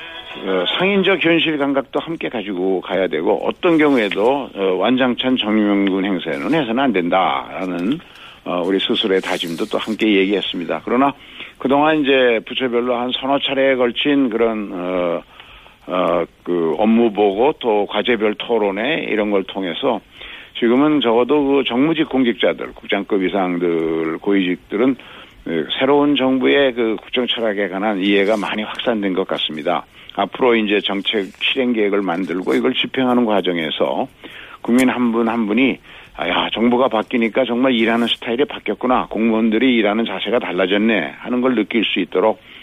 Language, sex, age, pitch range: Korean, male, 60-79, 95-130 Hz